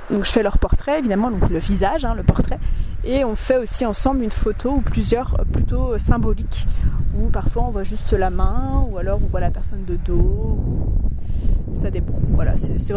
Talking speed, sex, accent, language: 195 wpm, female, French, French